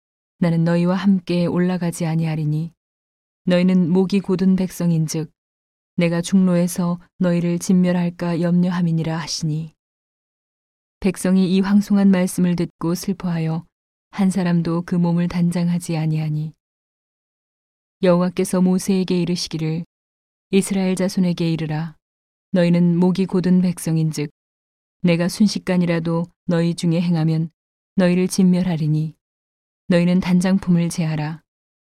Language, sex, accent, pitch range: Korean, female, native, 165-185 Hz